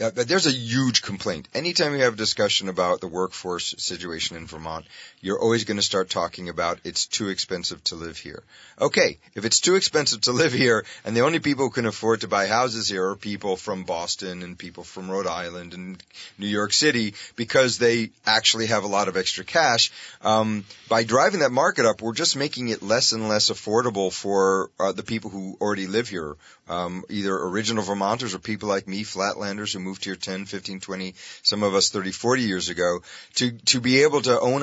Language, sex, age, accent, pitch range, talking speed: English, male, 30-49, American, 95-115 Hz, 205 wpm